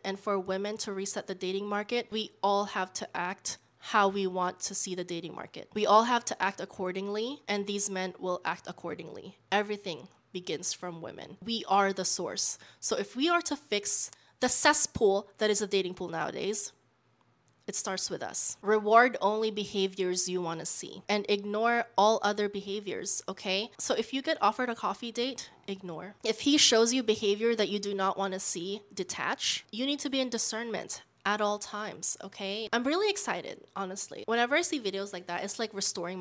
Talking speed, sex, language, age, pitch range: 195 wpm, female, English, 20-39, 190-225 Hz